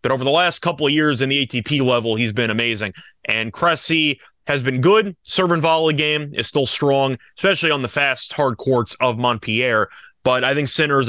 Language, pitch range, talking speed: English, 120-150 Hz, 210 wpm